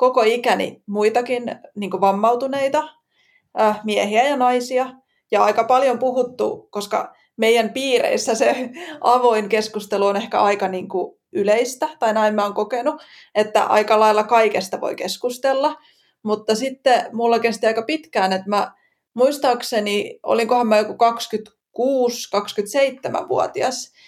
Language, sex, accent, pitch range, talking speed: Finnish, female, native, 210-265 Hz, 115 wpm